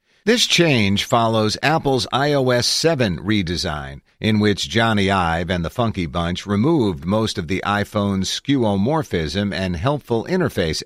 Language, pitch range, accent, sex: English, 90-120 Hz, American, male